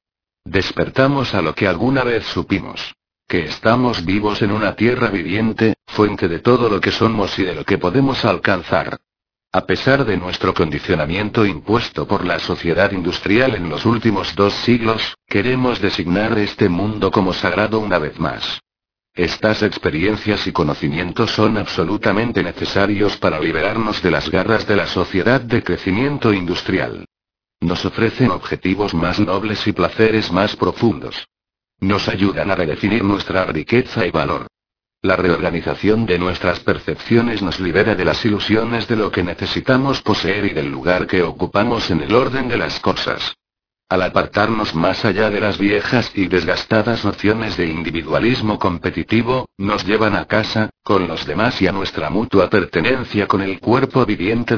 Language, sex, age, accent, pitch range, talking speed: Spanish, male, 60-79, Spanish, 90-110 Hz, 155 wpm